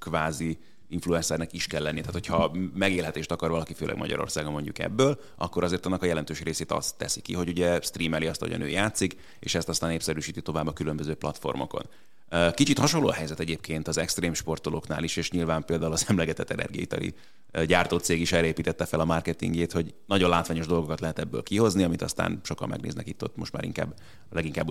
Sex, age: male, 30-49